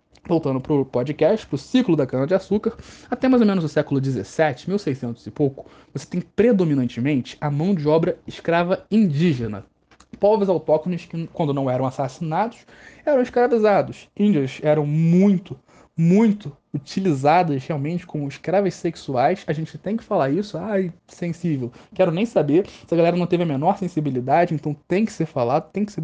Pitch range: 145-205 Hz